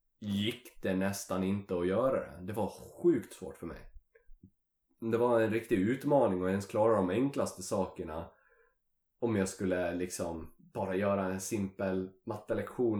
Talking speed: 155 wpm